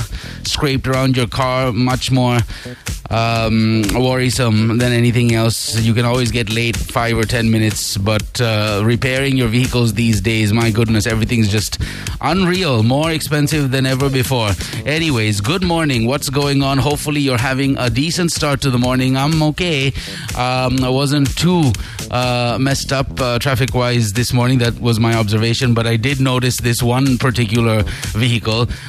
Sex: male